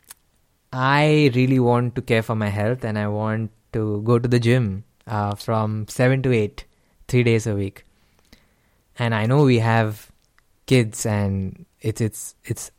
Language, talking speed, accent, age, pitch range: English, 165 wpm, Indian, 20-39, 105-125 Hz